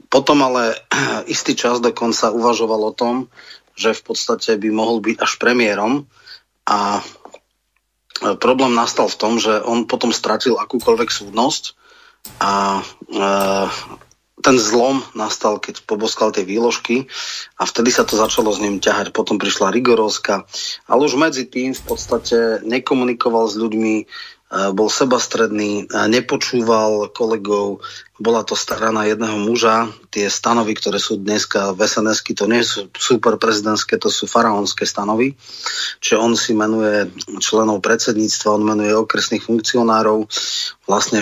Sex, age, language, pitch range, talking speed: male, 30-49, Slovak, 105-120 Hz, 130 wpm